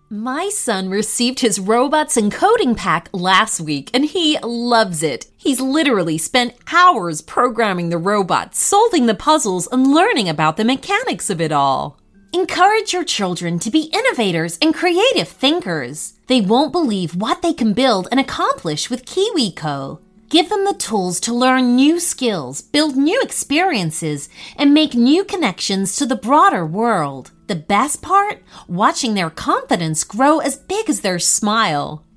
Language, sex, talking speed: English, female, 155 wpm